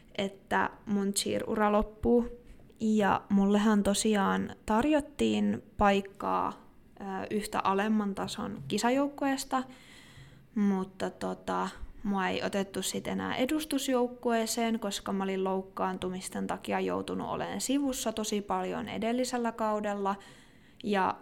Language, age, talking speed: Finnish, 20-39, 95 wpm